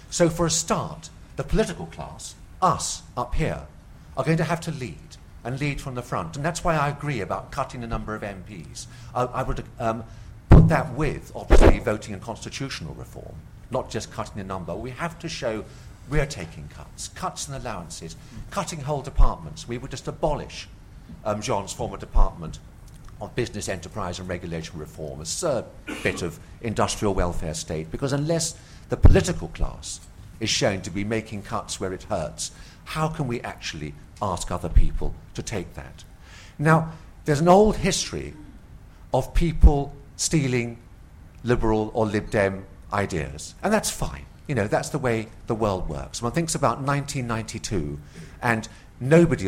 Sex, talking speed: male, 165 wpm